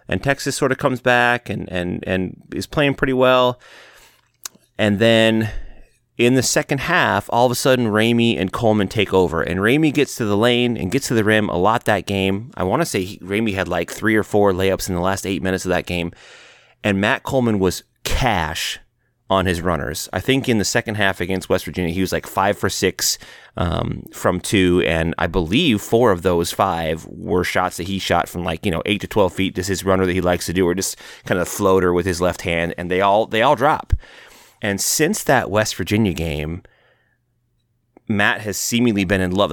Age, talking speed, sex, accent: 30-49, 220 wpm, male, American